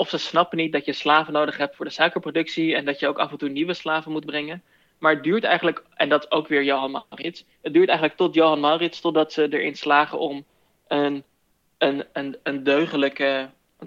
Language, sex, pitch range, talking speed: Dutch, male, 140-155 Hz, 215 wpm